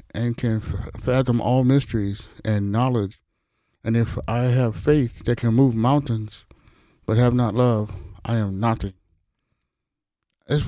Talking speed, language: 145 wpm, English